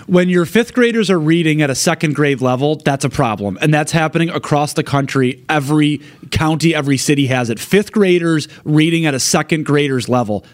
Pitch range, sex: 135-175 Hz, male